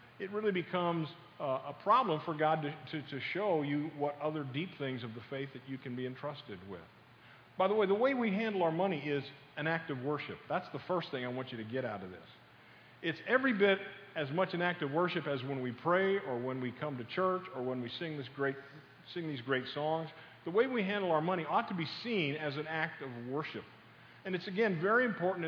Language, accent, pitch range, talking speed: English, American, 140-185 Hz, 235 wpm